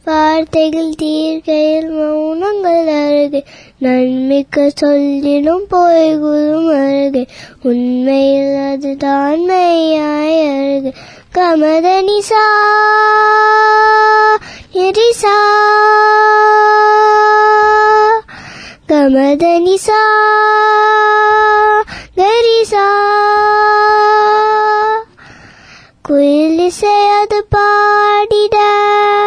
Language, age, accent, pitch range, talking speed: Tamil, 20-39, native, 285-415 Hz, 40 wpm